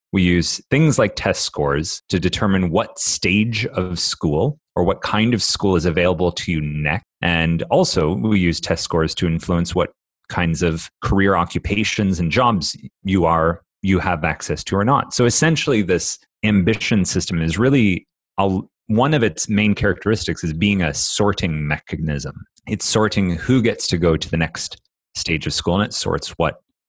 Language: English